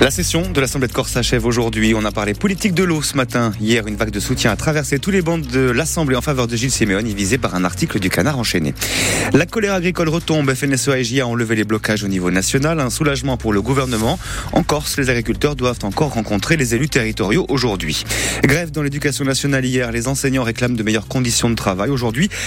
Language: French